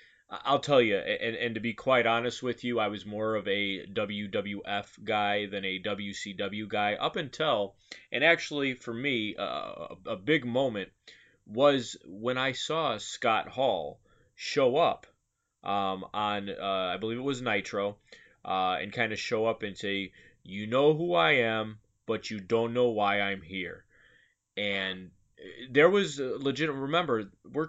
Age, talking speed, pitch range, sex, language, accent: 20-39, 160 wpm, 105-140 Hz, male, English, American